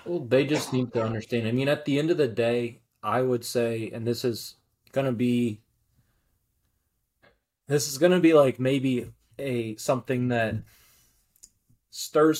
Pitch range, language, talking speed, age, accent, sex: 115-135 Hz, English, 155 wpm, 20-39, American, male